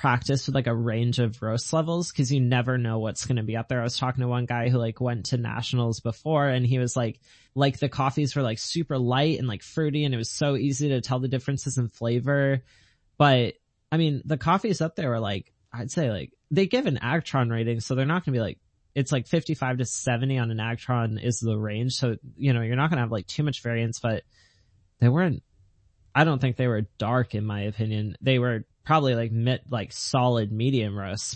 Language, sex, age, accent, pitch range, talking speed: English, male, 20-39, American, 110-130 Hz, 230 wpm